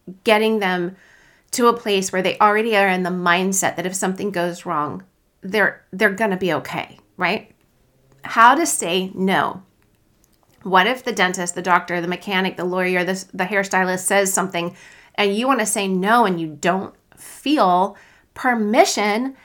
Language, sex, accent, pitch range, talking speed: English, female, American, 180-250 Hz, 165 wpm